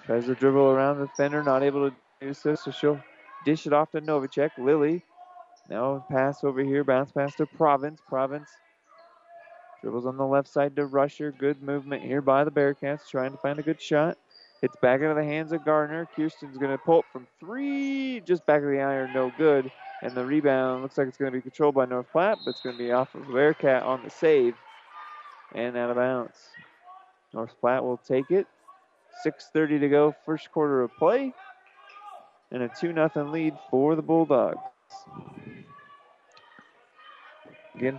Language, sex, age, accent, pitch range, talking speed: English, male, 30-49, American, 135-160 Hz, 180 wpm